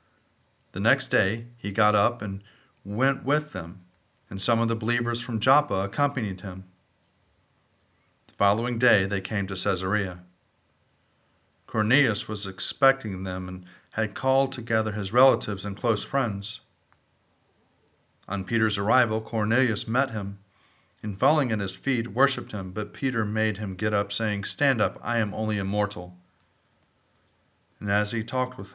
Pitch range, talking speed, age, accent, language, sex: 95-120 Hz, 145 wpm, 40-59, American, English, male